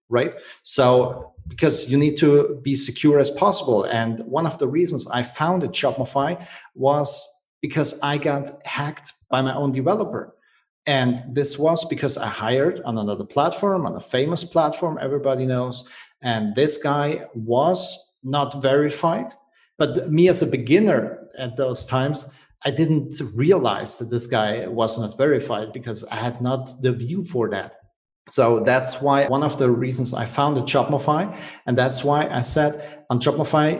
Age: 40-59